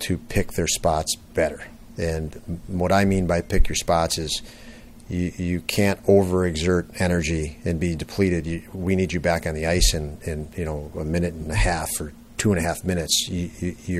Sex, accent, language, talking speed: male, American, English, 205 wpm